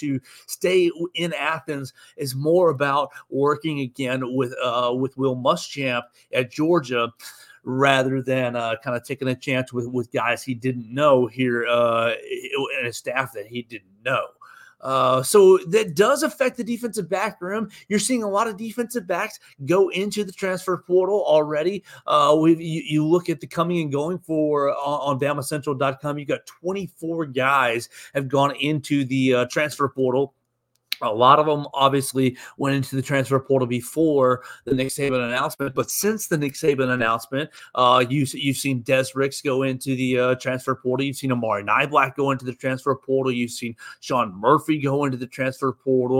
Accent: American